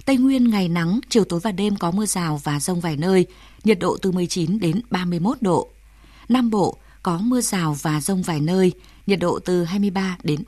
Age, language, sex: 20-39, Vietnamese, female